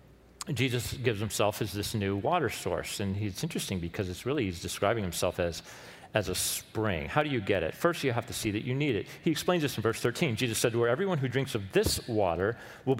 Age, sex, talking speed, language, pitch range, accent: 40-59, male, 245 wpm, English, 115-160 Hz, American